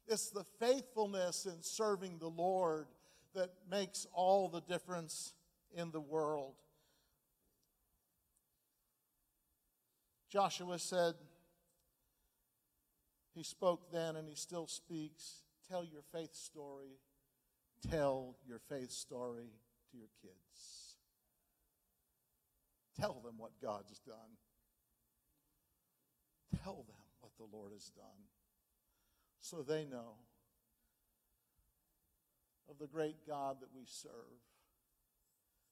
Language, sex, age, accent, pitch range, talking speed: English, male, 60-79, American, 140-180 Hz, 95 wpm